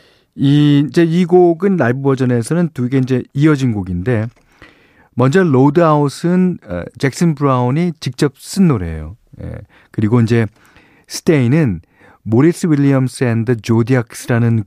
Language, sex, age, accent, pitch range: Korean, male, 40-59, native, 115-175 Hz